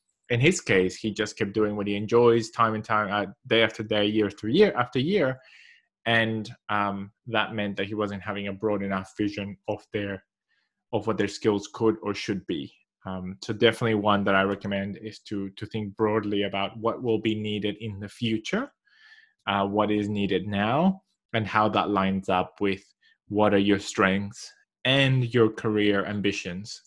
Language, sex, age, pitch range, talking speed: English, male, 20-39, 100-115 Hz, 185 wpm